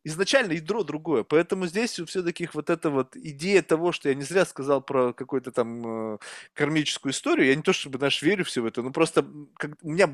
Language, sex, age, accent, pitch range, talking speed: Russian, male, 20-39, native, 145-210 Hz, 200 wpm